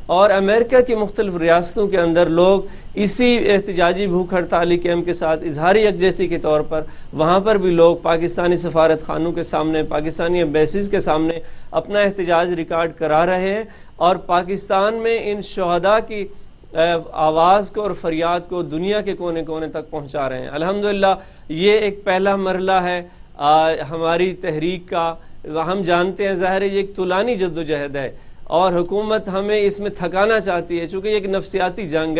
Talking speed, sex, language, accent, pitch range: 155 wpm, male, English, Indian, 170-200 Hz